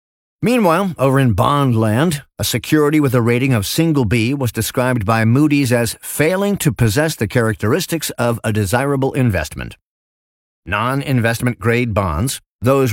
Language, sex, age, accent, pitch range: Chinese, male, 50-69, American, 110-140 Hz